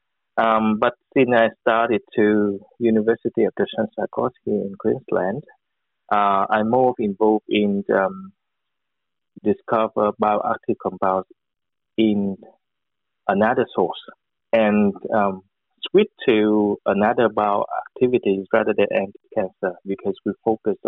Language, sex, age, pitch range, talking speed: English, male, 20-39, 100-115 Hz, 110 wpm